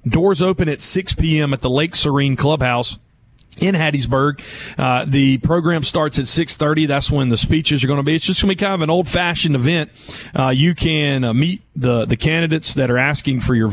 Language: English